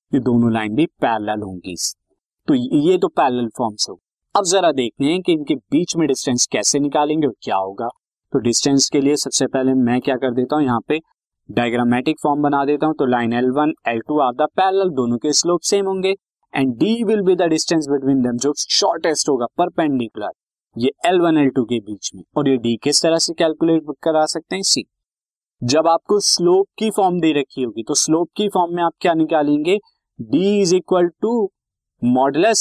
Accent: native